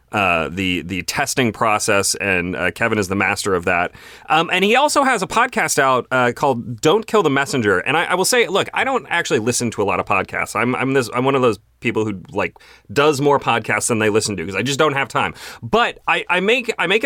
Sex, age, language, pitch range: male, 30-49, English, 110-145 Hz